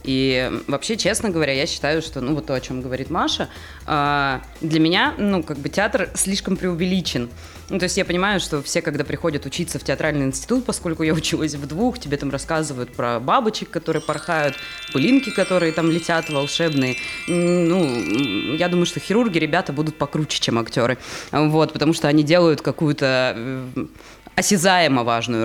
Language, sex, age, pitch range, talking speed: Russian, female, 20-39, 145-180 Hz, 165 wpm